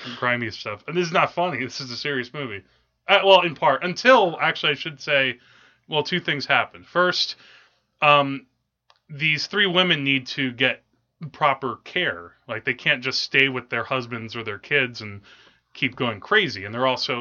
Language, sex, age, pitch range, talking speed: English, male, 20-39, 115-140 Hz, 185 wpm